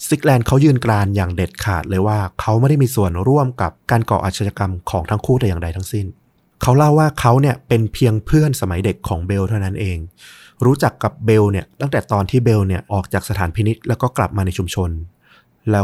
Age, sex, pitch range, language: 20-39, male, 95-120 Hz, Thai